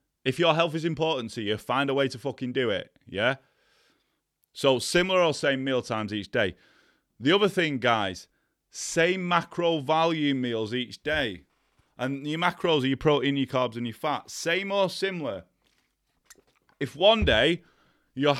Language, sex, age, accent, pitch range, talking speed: English, male, 30-49, British, 115-155 Hz, 165 wpm